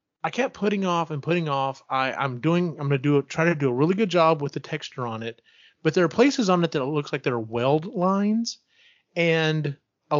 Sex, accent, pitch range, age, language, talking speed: male, American, 120-160 Hz, 30-49, English, 255 wpm